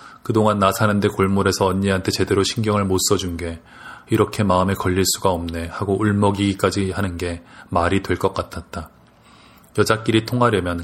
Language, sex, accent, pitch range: Korean, male, native, 90-105 Hz